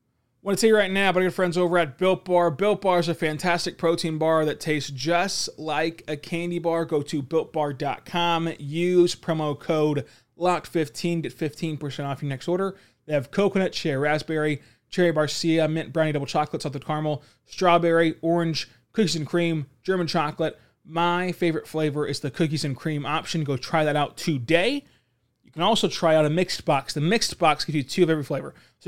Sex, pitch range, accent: male, 140-170 Hz, American